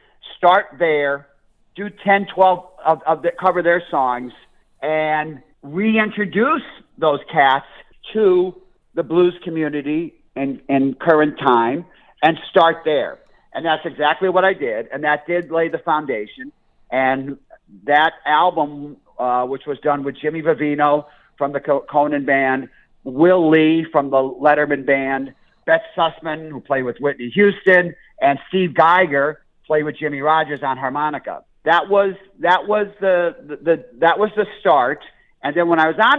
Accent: American